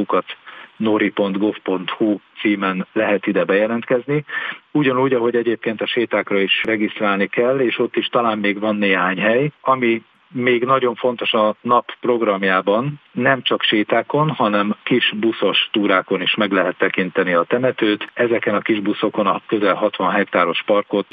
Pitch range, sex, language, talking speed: 95-120 Hz, male, Hungarian, 140 wpm